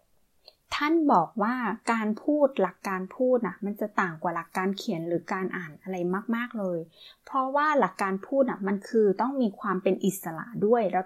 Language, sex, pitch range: Thai, female, 190-260 Hz